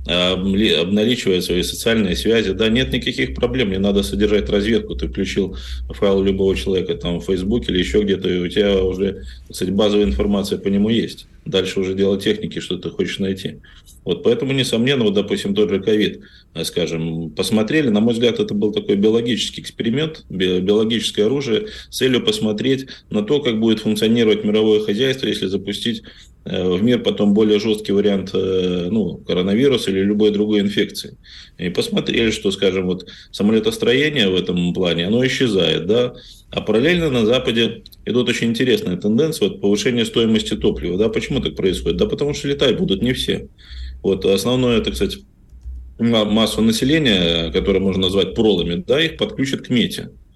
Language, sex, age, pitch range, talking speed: Russian, male, 20-39, 95-110 Hz, 160 wpm